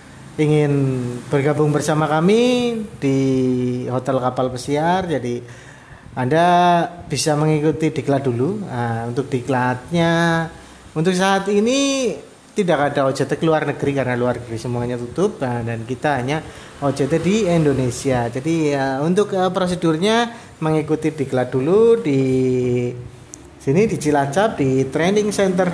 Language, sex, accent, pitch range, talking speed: Indonesian, male, native, 130-175 Hz, 120 wpm